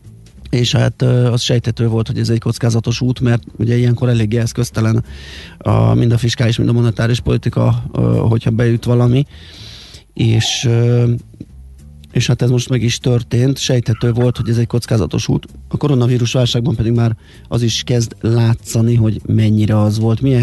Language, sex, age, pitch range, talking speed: Hungarian, male, 30-49, 115-120 Hz, 160 wpm